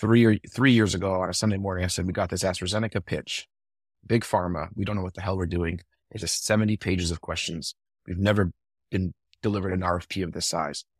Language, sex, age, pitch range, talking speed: English, male, 30-49, 90-110 Hz, 225 wpm